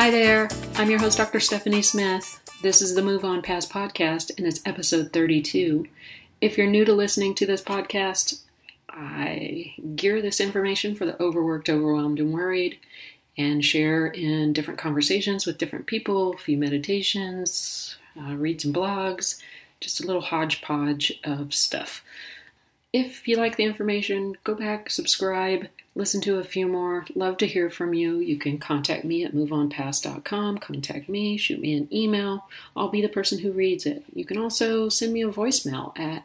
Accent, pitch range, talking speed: American, 160-210 Hz, 170 wpm